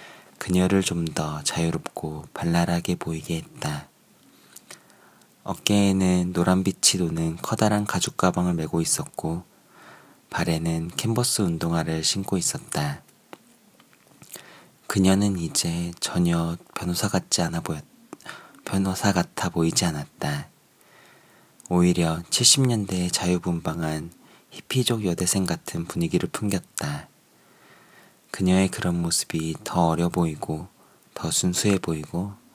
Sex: male